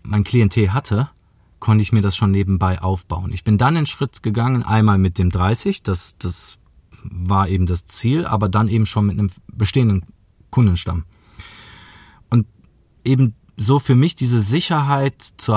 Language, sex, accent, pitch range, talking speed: German, male, German, 100-125 Hz, 165 wpm